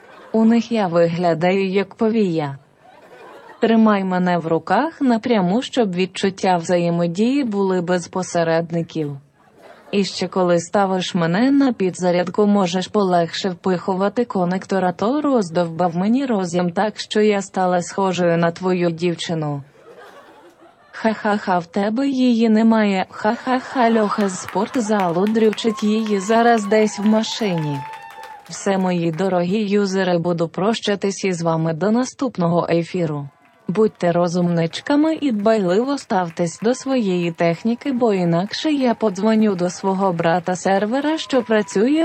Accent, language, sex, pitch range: native, Ukrainian, female, 175-225 Hz